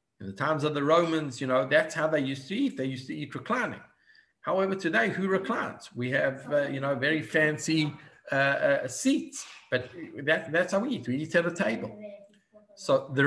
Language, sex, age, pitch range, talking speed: English, male, 50-69, 130-200 Hz, 210 wpm